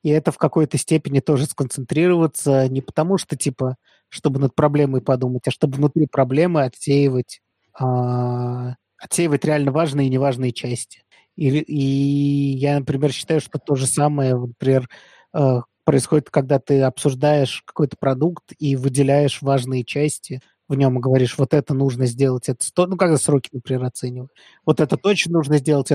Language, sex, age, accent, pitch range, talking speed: Russian, male, 20-39, native, 135-155 Hz, 155 wpm